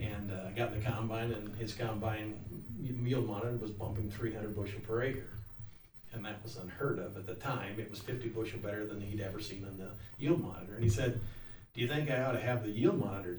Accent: American